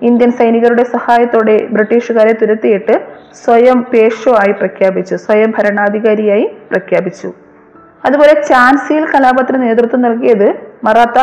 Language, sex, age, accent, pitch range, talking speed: Malayalam, female, 30-49, native, 220-255 Hz, 95 wpm